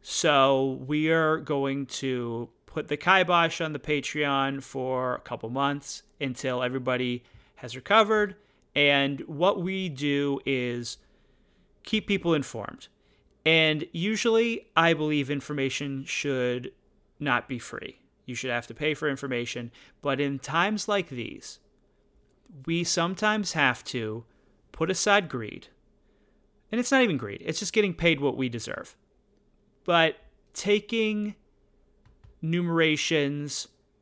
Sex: male